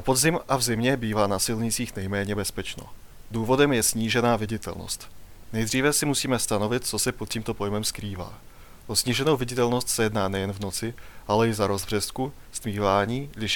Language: Czech